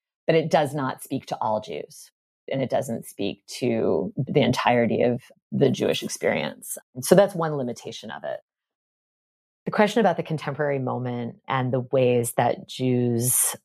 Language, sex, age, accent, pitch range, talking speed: English, female, 30-49, American, 125-160 Hz, 160 wpm